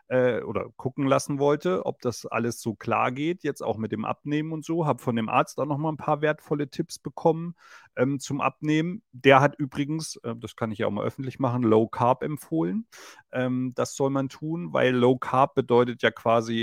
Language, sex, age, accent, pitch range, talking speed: German, male, 30-49, German, 105-140 Hz, 205 wpm